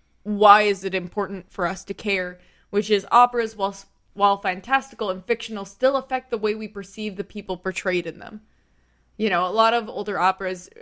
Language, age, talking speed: English, 20-39, 190 wpm